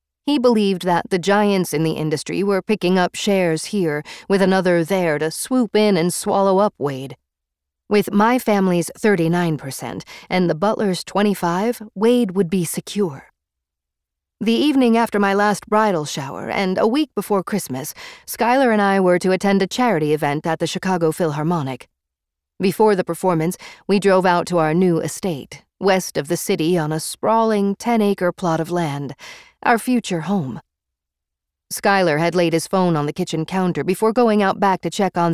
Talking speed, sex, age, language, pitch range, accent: 170 wpm, female, 40-59, English, 155-205 Hz, American